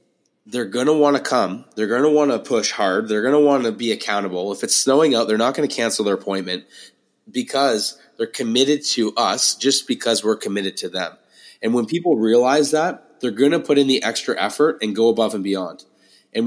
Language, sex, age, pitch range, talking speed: English, male, 20-39, 110-145 Hz, 220 wpm